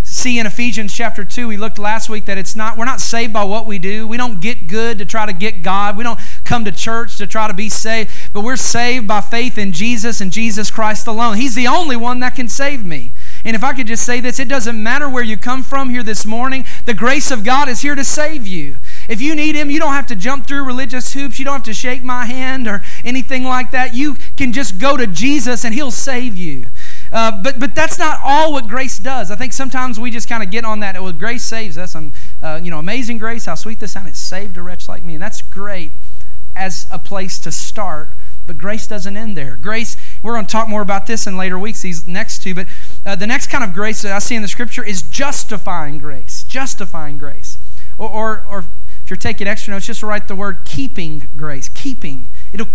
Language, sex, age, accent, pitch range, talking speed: English, male, 30-49, American, 195-250 Hz, 245 wpm